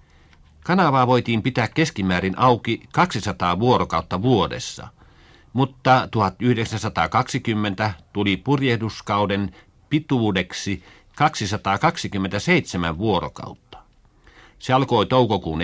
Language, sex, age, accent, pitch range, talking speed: Finnish, male, 60-79, native, 95-125 Hz, 70 wpm